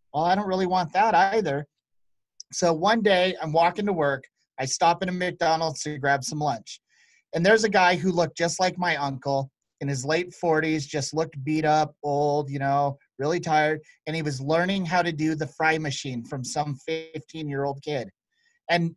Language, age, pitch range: English, 30-49, 145-170 Hz